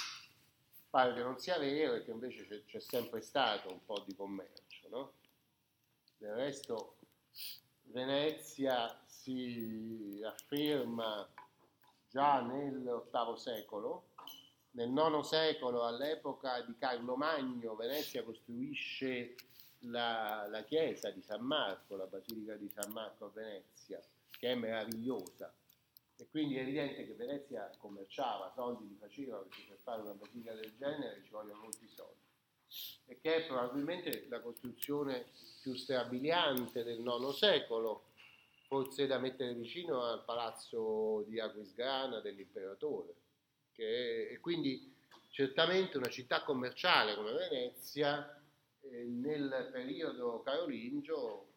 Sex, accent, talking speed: male, native, 120 wpm